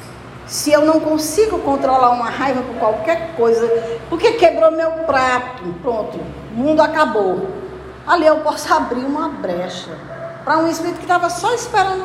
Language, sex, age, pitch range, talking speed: Portuguese, female, 50-69, 255-355 Hz, 155 wpm